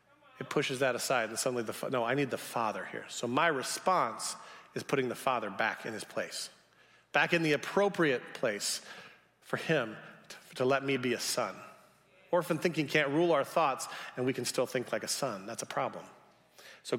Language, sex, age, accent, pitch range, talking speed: English, male, 40-59, American, 135-180 Hz, 200 wpm